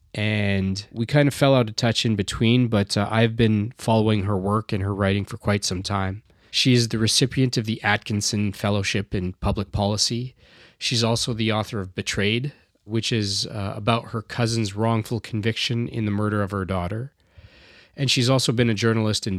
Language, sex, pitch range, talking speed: English, male, 100-115 Hz, 190 wpm